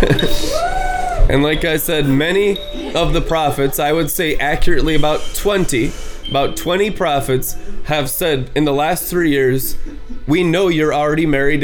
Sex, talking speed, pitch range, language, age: male, 150 wpm, 145-190 Hz, English, 20-39